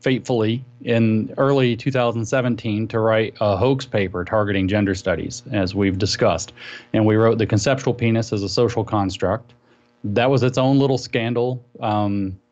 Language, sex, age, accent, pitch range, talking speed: English, male, 30-49, American, 100-120 Hz, 155 wpm